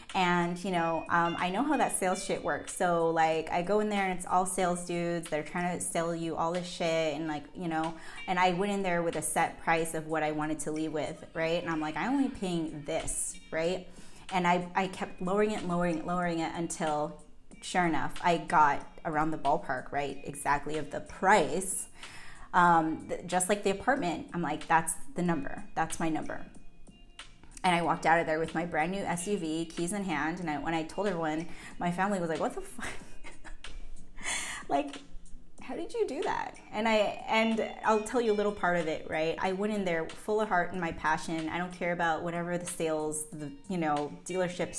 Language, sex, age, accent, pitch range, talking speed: English, female, 20-39, American, 160-185 Hz, 220 wpm